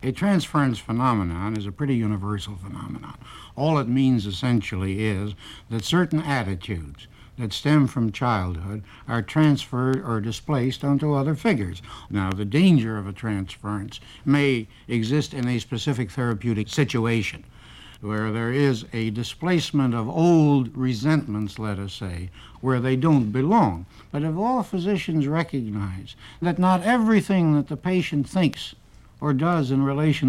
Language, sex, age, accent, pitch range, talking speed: English, male, 60-79, American, 110-150 Hz, 140 wpm